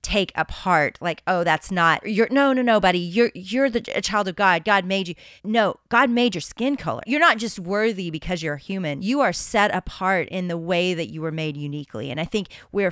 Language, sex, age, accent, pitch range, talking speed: English, female, 30-49, American, 160-195 Hz, 230 wpm